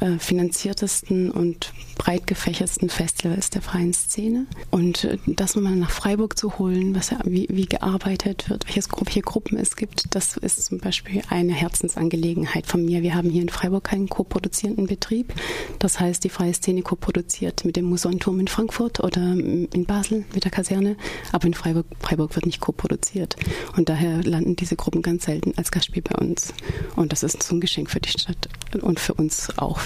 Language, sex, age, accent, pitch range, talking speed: German, female, 30-49, German, 165-190 Hz, 180 wpm